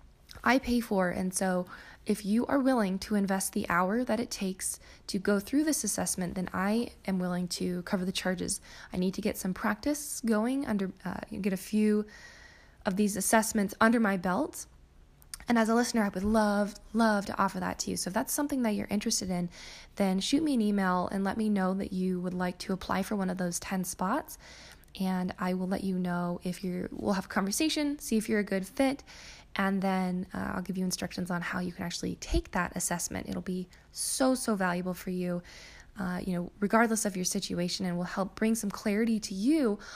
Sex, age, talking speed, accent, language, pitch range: female, 10-29, 215 wpm, American, English, 185-220 Hz